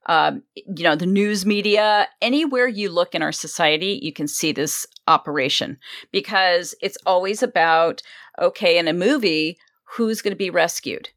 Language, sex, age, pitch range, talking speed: English, female, 40-59, 165-235 Hz, 160 wpm